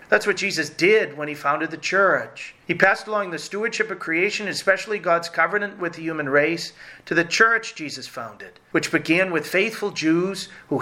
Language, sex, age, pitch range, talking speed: English, male, 40-59, 155-195 Hz, 190 wpm